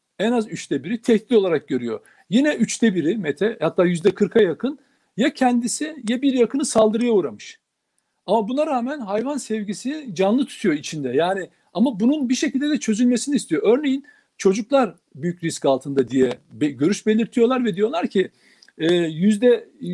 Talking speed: 145 wpm